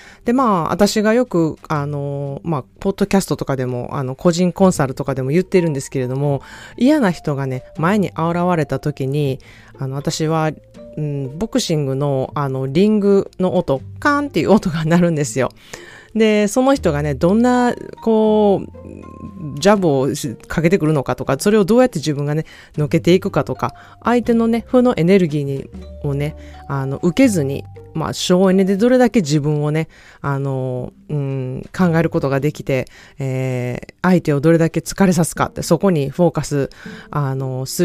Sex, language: female, Japanese